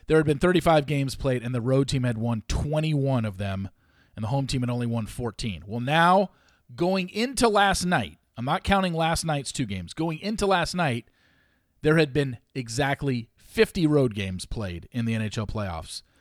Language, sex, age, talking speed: English, male, 40-59, 195 wpm